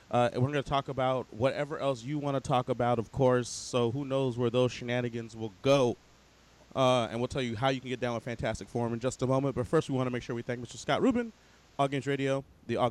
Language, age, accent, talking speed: English, 30-49, American, 270 wpm